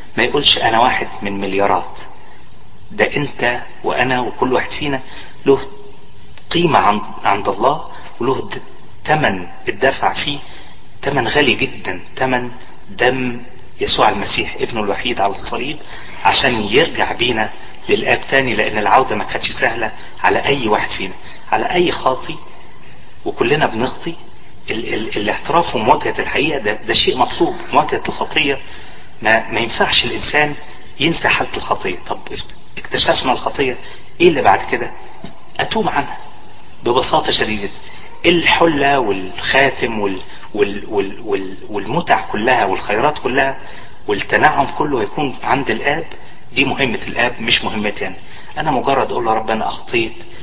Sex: male